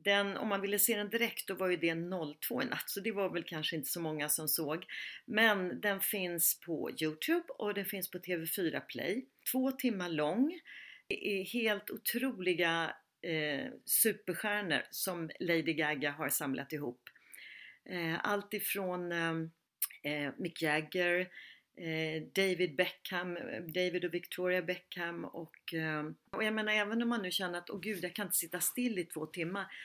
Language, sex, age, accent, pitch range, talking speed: Swedish, female, 40-59, native, 165-225 Hz, 160 wpm